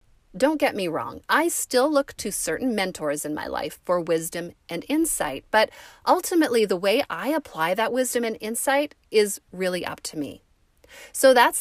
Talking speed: 175 wpm